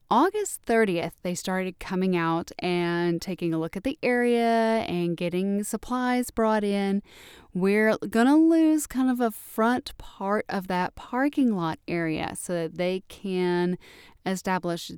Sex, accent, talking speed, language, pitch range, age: female, American, 150 wpm, English, 180-230 Hz, 30-49